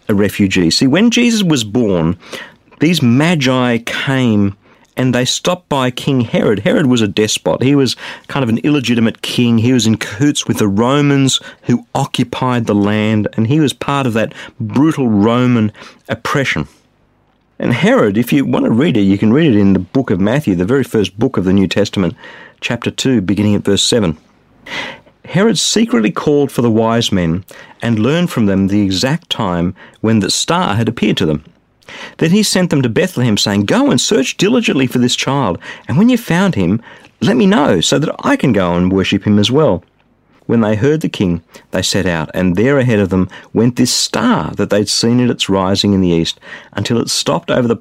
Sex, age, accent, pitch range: male, 50-69, Australian, 100-135 Hz